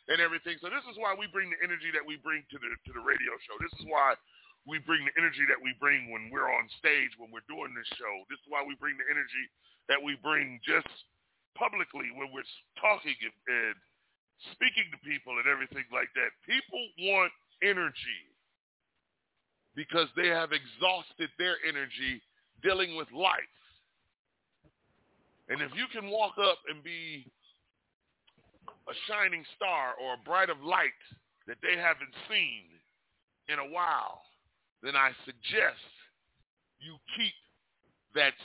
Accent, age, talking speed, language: American, 40-59, 160 wpm, English